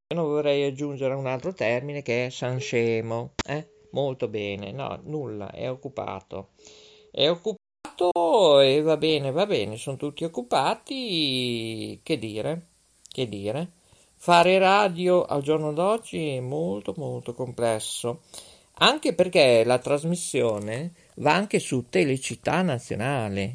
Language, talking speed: Italian, 125 wpm